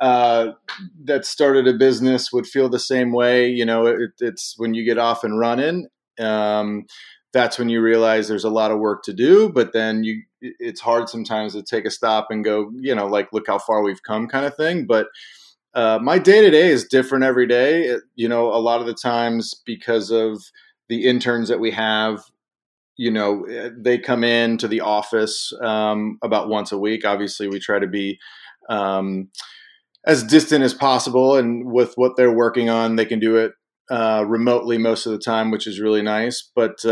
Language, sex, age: English, male, 30-49